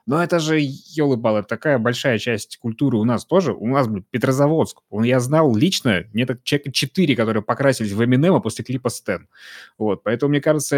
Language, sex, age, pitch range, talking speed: Russian, male, 20-39, 110-150 Hz, 190 wpm